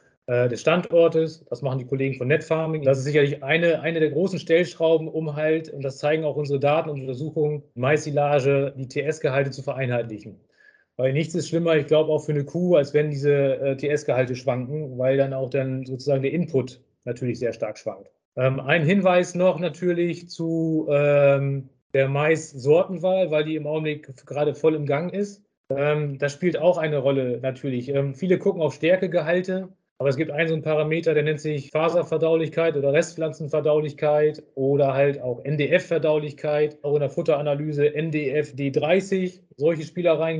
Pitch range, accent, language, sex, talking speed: 140-160 Hz, German, German, male, 165 wpm